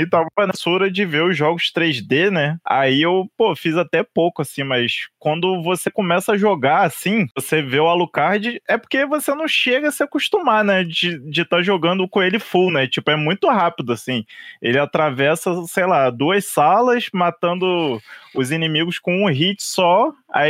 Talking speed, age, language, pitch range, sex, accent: 185 wpm, 20-39, Portuguese, 140-195 Hz, male, Brazilian